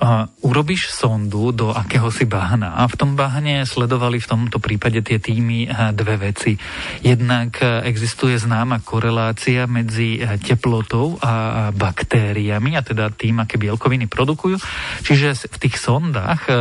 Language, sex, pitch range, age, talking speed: Slovak, male, 110-135 Hz, 40-59, 135 wpm